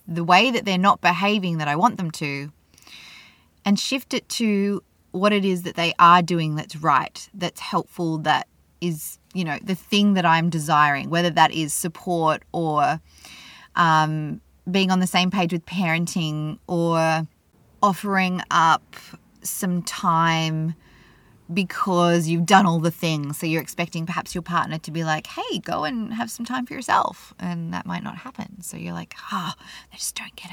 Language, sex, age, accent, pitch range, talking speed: English, female, 20-39, Australian, 155-195 Hz, 175 wpm